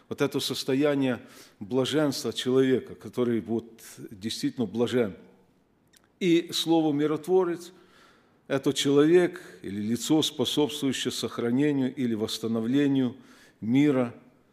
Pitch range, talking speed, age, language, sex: 115-140 Hz, 85 wpm, 50-69, Russian, male